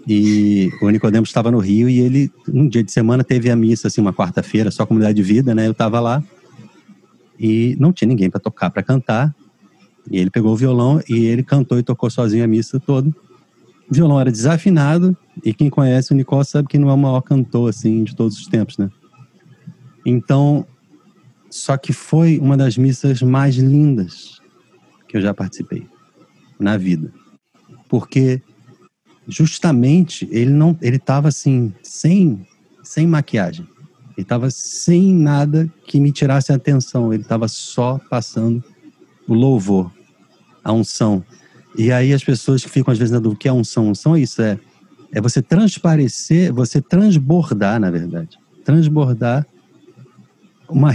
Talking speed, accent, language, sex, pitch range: 165 wpm, Brazilian, Portuguese, male, 110-150 Hz